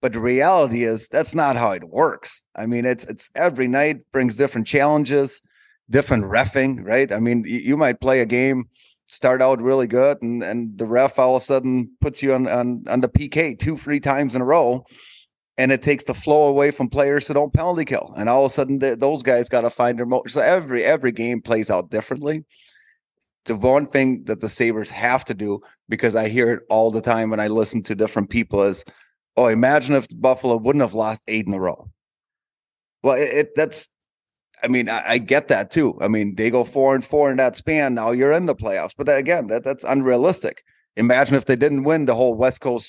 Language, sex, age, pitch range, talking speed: English, male, 30-49, 115-135 Hz, 230 wpm